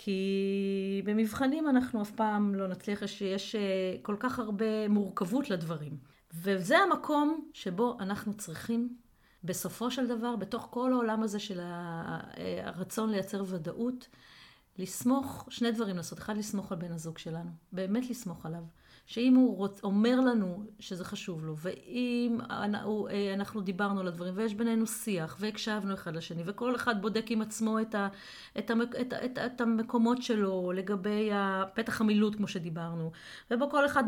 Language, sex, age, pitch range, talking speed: Hebrew, female, 40-59, 180-225 Hz, 135 wpm